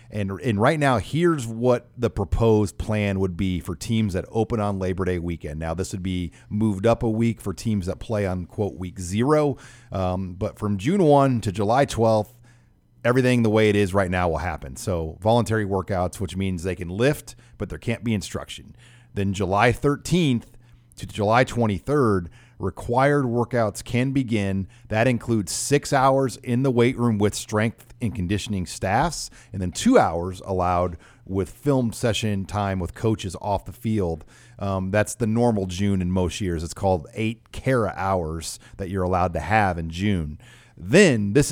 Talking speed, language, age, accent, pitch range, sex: 180 wpm, English, 40-59, American, 95-120 Hz, male